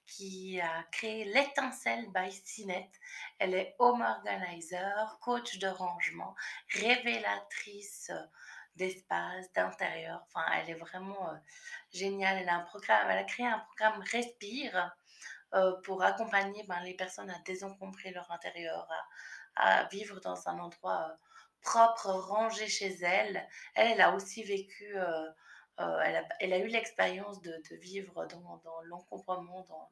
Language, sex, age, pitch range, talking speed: French, female, 20-39, 175-210 Hz, 145 wpm